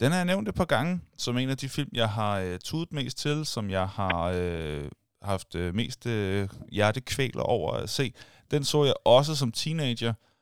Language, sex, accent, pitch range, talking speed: Danish, male, native, 105-130 Hz, 205 wpm